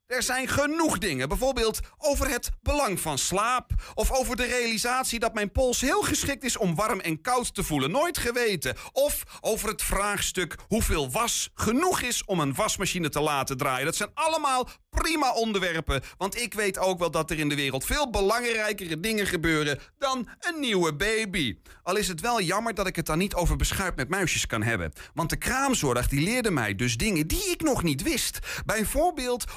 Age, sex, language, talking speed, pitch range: 40-59, male, Dutch, 190 wpm, 165-250 Hz